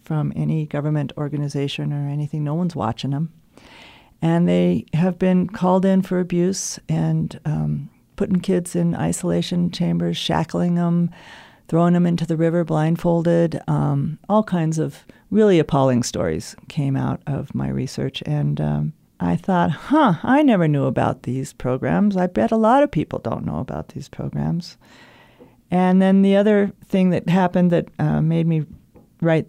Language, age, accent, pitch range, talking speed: English, 40-59, American, 130-175 Hz, 160 wpm